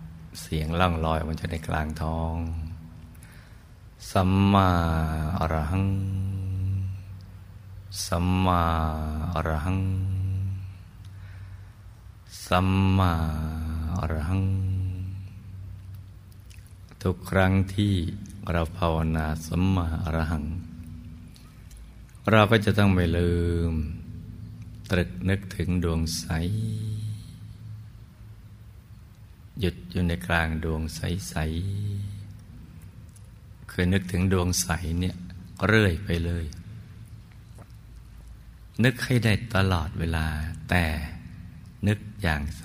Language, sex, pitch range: Thai, male, 85-100 Hz